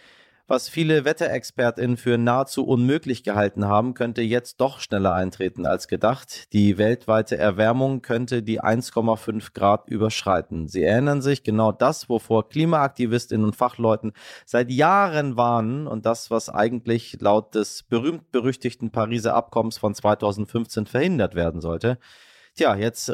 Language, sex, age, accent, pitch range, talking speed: German, male, 30-49, German, 105-125 Hz, 130 wpm